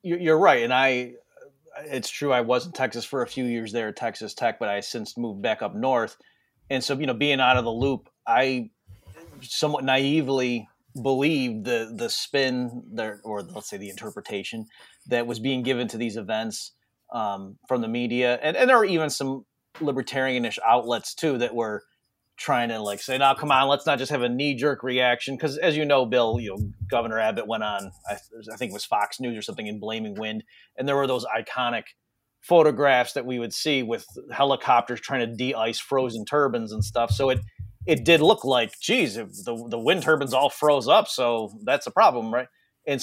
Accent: American